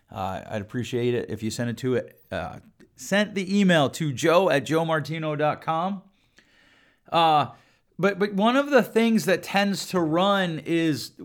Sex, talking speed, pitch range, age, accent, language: male, 160 wpm, 130-185 Hz, 30-49, American, English